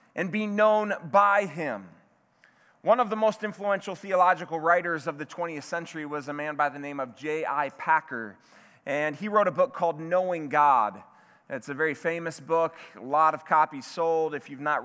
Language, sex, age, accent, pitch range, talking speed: English, male, 30-49, American, 160-220 Hz, 185 wpm